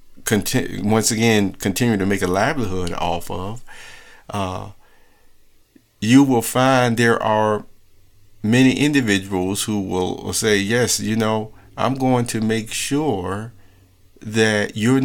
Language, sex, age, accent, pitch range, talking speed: English, male, 50-69, American, 95-115 Hz, 120 wpm